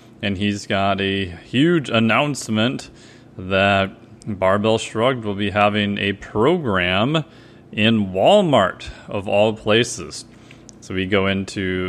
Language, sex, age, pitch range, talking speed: English, male, 30-49, 100-120 Hz, 115 wpm